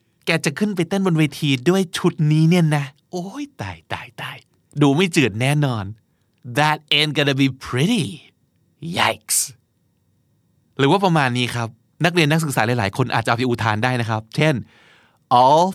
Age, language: 30-49, Thai